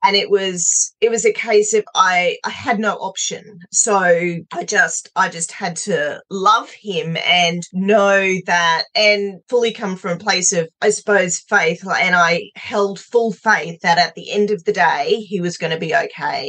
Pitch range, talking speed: 170-210 Hz, 190 wpm